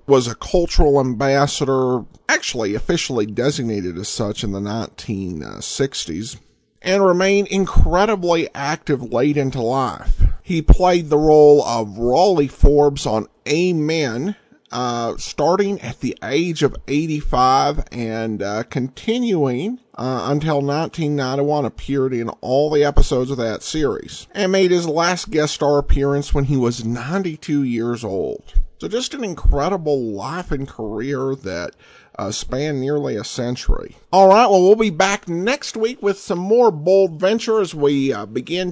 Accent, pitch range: American, 125-185 Hz